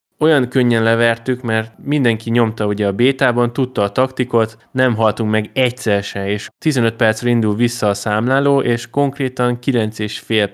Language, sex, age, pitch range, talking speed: Hungarian, male, 10-29, 105-125 Hz, 155 wpm